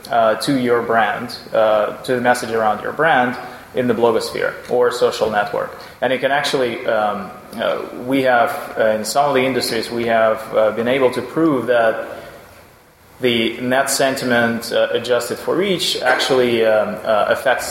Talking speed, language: 170 wpm, English